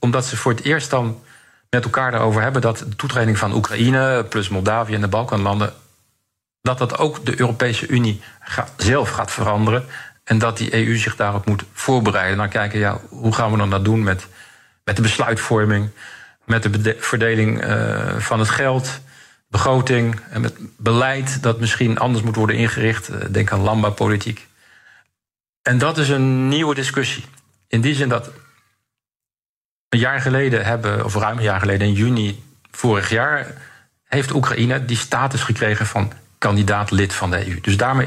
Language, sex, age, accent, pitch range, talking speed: Dutch, male, 40-59, Dutch, 105-125 Hz, 165 wpm